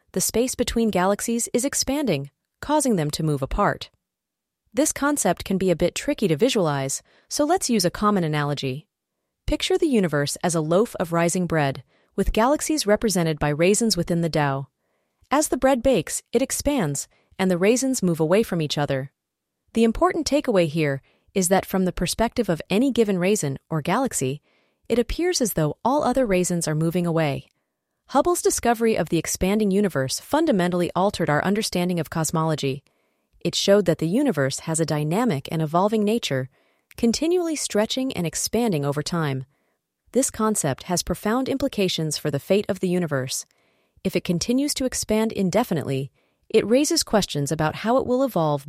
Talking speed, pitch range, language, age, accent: 170 wpm, 155-240 Hz, English, 30-49, American